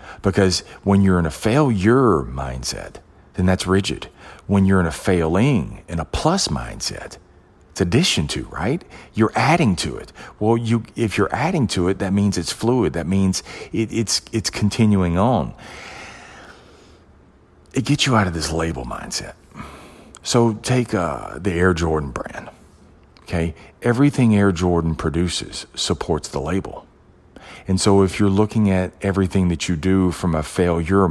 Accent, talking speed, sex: American, 155 wpm, male